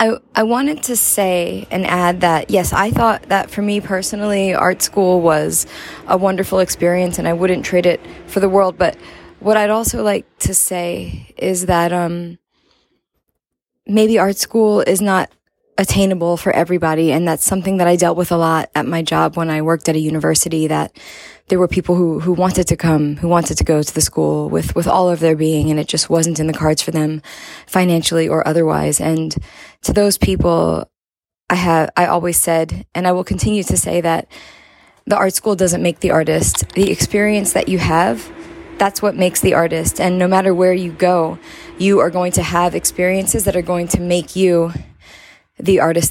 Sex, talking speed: female, 200 wpm